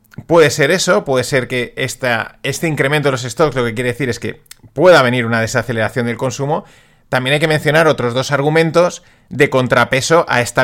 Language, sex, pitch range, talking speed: Spanish, male, 125-160 Hz, 190 wpm